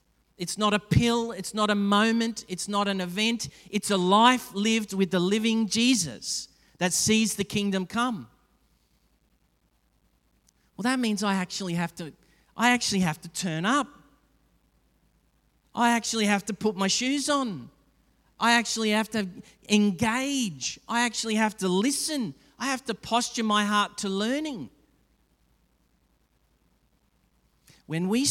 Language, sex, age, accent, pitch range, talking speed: English, male, 40-59, Australian, 185-230 Hz, 140 wpm